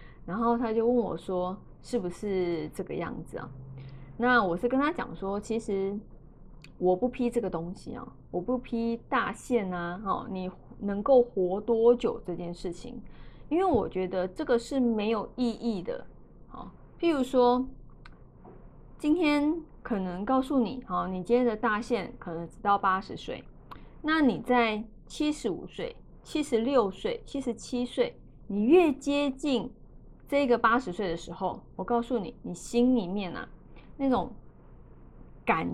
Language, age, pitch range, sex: Chinese, 20-39, 190-255 Hz, female